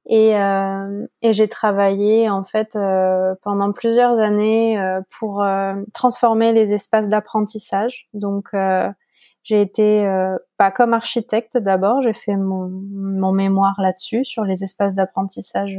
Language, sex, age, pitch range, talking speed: French, female, 20-39, 200-225 Hz, 145 wpm